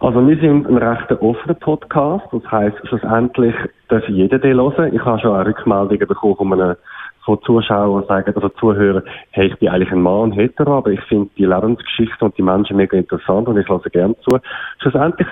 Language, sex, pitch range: German, male, 100-130 Hz